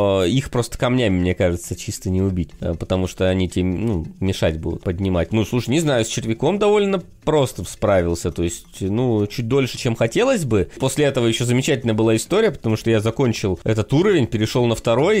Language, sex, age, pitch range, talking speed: Russian, male, 20-39, 100-140 Hz, 190 wpm